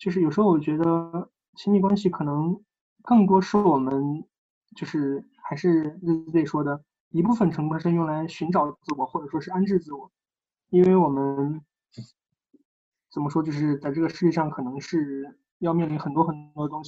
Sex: male